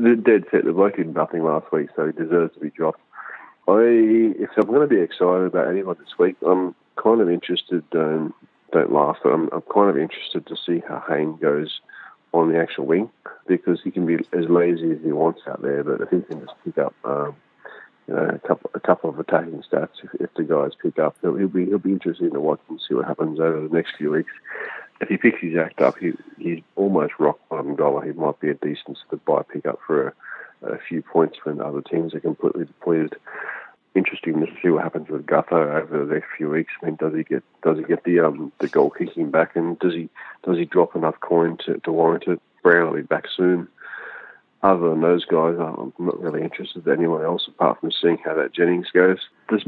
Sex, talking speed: male, 230 wpm